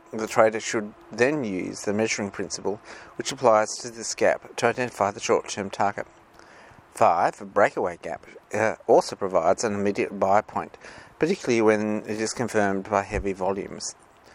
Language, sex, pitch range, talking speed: English, male, 105-125 Hz, 155 wpm